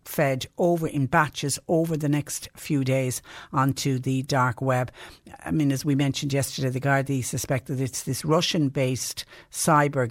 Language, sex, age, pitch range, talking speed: English, female, 60-79, 130-150 Hz, 160 wpm